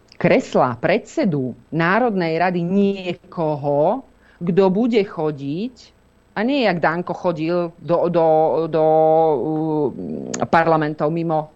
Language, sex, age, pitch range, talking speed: Slovak, female, 40-59, 155-210 Hz, 100 wpm